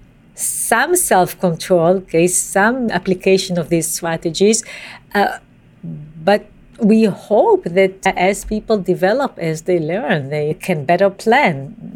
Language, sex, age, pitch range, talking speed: English, female, 50-69, 175-225 Hz, 120 wpm